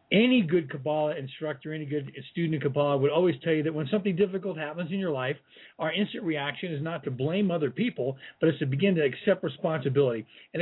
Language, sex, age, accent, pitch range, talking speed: English, male, 50-69, American, 150-190 Hz, 215 wpm